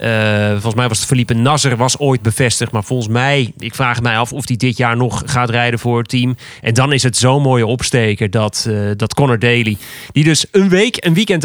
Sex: male